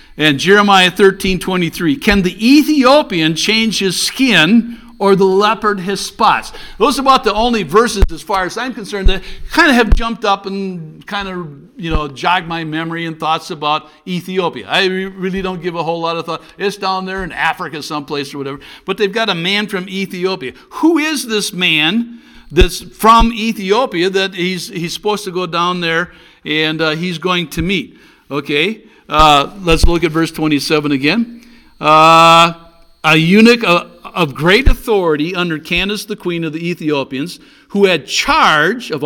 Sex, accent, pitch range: male, American, 155-205 Hz